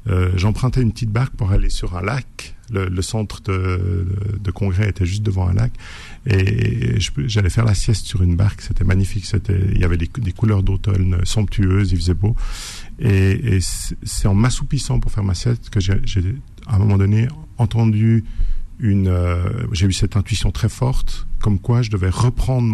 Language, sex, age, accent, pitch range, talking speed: French, male, 50-69, French, 95-115 Hz, 195 wpm